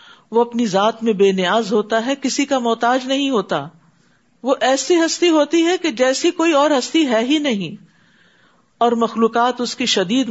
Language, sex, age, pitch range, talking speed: Urdu, female, 50-69, 180-250 Hz, 180 wpm